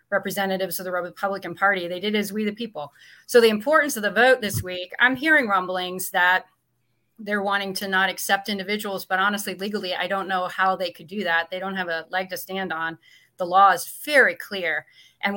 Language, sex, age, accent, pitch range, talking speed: English, female, 30-49, American, 180-210 Hz, 210 wpm